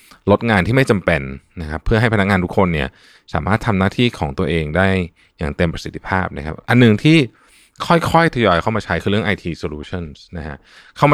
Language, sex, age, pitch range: Thai, male, 20-39, 85-110 Hz